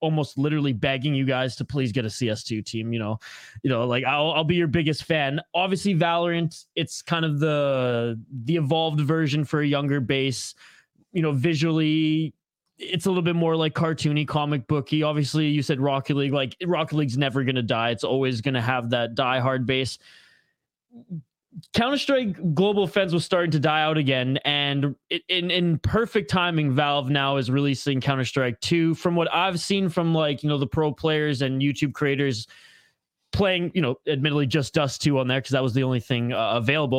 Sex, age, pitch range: male, 20-39, 140-170 Hz